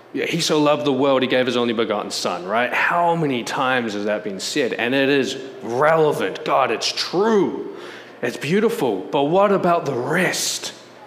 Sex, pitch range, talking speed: male, 115-185 Hz, 185 wpm